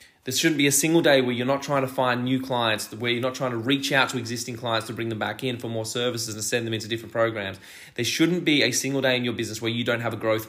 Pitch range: 115-135 Hz